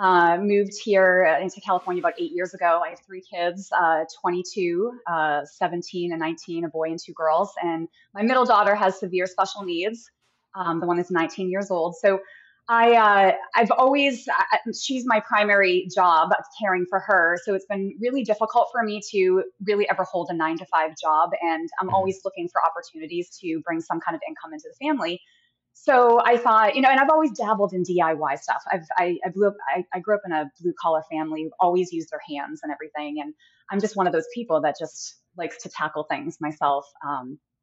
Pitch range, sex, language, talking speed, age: 165-220 Hz, female, English, 210 wpm, 20-39